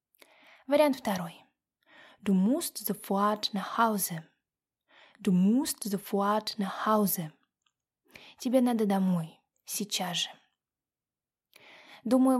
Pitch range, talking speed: 195-275 Hz, 65 wpm